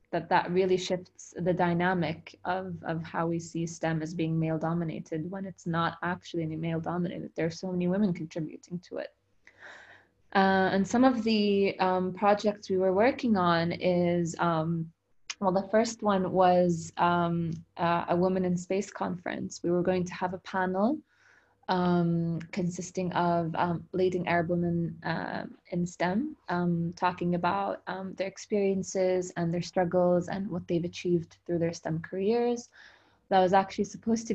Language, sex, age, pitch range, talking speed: English, female, 20-39, 170-190 Hz, 165 wpm